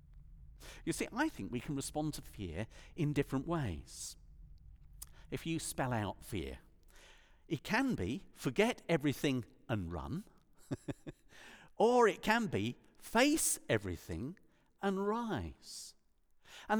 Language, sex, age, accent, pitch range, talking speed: English, male, 50-69, British, 120-195 Hz, 120 wpm